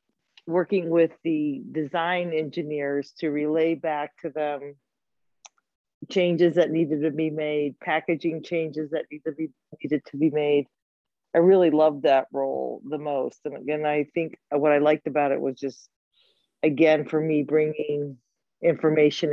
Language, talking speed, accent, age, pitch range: English, 150 wpm, American, 40-59, 145-180 Hz